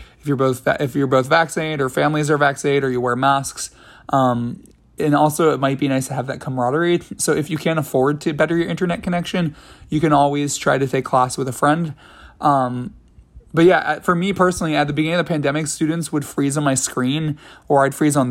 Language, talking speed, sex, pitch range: English, 225 wpm, male, 130-150 Hz